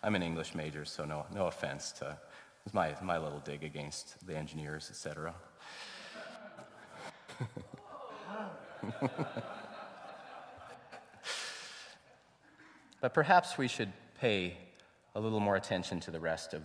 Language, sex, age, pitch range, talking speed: English, male, 30-49, 80-110 Hz, 120 wpm